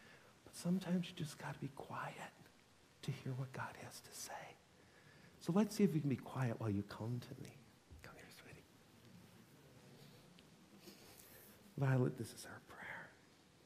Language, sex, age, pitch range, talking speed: English, male, 50-69, 125-155 Hz, 155 wpm